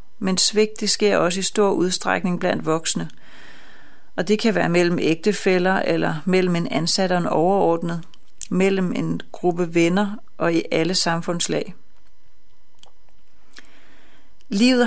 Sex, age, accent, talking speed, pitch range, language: female, 30-49, native, 130 wpm, 175-210 Hz, Danish